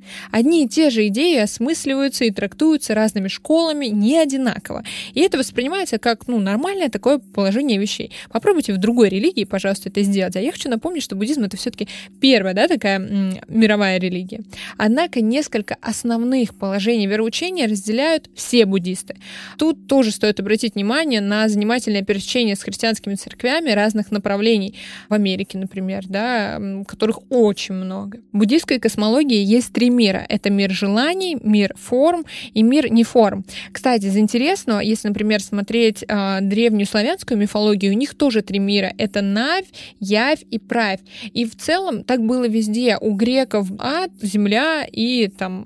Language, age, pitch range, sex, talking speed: Russian, 20-39, 205-255 Hz, female, 155 wpm